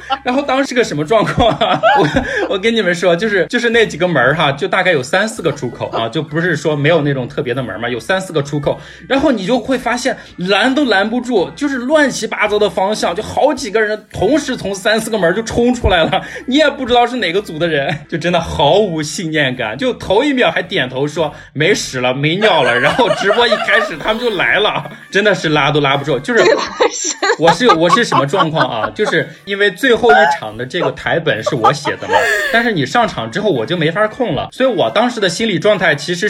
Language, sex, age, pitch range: Chinese, male, 20-39, 160-255 Hz